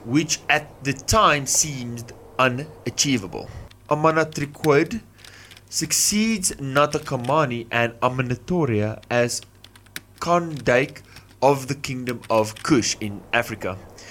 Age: 20-39